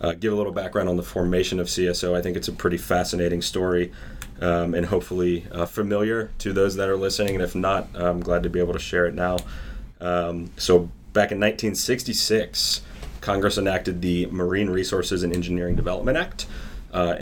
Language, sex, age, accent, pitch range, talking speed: English, male, 30-49, American, 85-100 Hz, 190 wpm